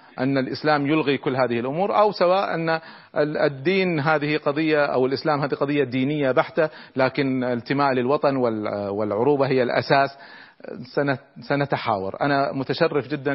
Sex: male